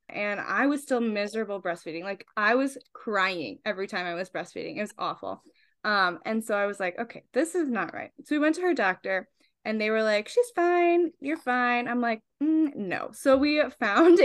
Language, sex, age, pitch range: English, female, 10-29, 195-255 Hz